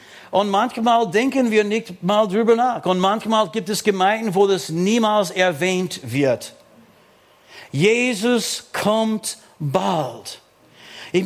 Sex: male